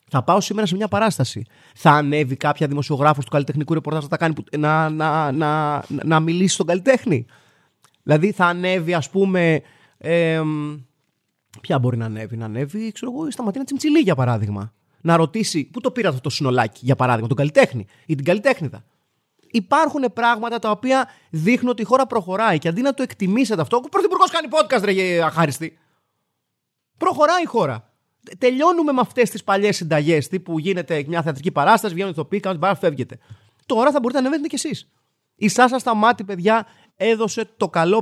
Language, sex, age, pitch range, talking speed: Greek, male, 30-49, 145-230 Hz, 170 wpm